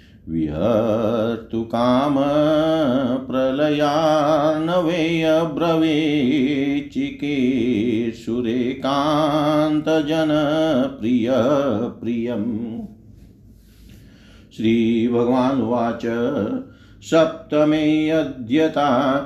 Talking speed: 30 wpm